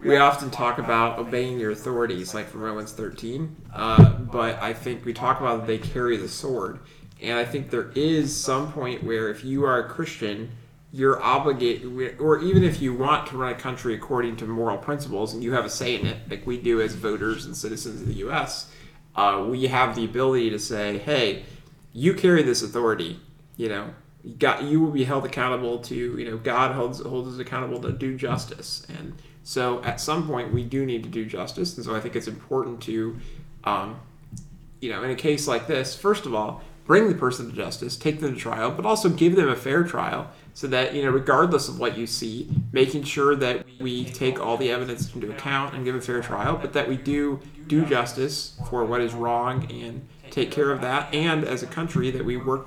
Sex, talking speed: male, 215 wpm